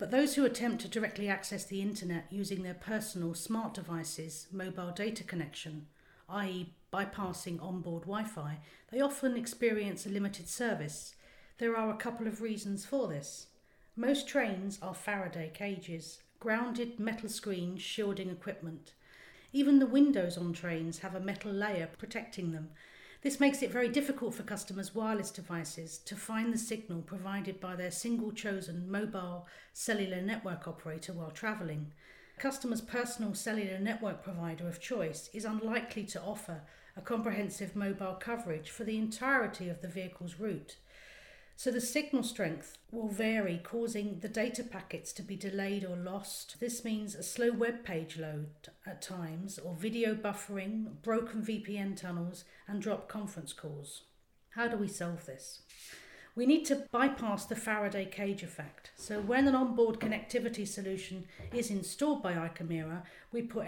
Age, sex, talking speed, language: 40-59, female, 150 wpm, English